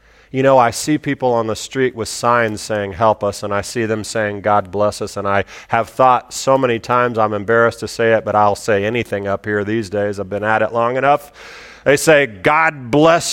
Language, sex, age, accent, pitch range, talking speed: English, male, 40-59, American, 105-135 Hz, 230 wpm